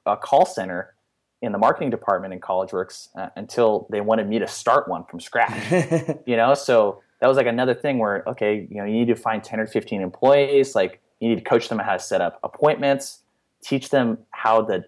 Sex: male